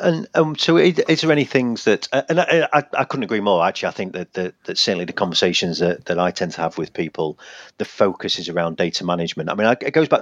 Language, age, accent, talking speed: English, 40-59, British, 260 wpm